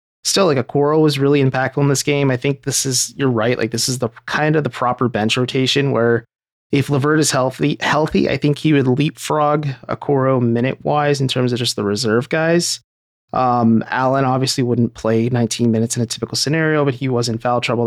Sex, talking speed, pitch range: male, 210 wpm, 110-135 Hz